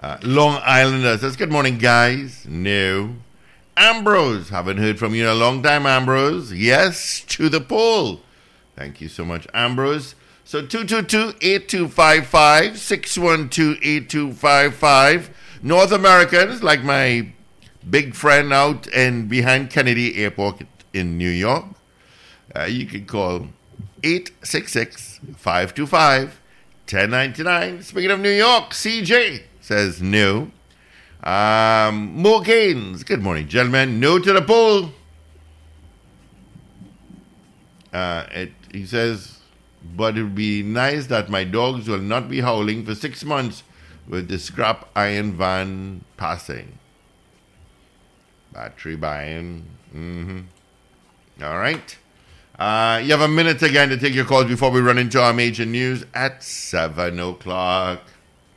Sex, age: male, 60-79